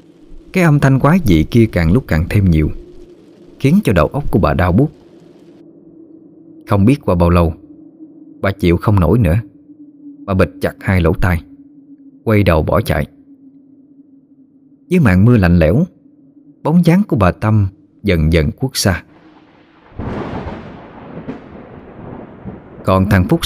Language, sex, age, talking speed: Vietnamese, male, 20-39, 145 wpm